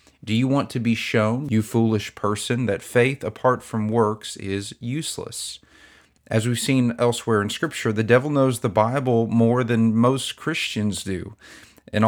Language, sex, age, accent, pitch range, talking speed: English, male, 40-59, American, 110-125 Hz, 165 wpm